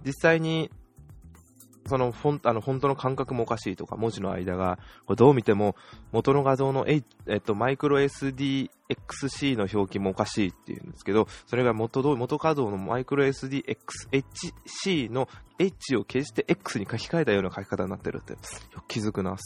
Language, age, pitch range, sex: Japanese, 20-39, 100-135 Hz, male